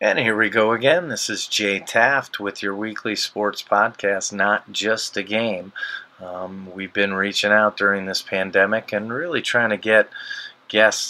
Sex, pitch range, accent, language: male, 95-105 Hz, American, English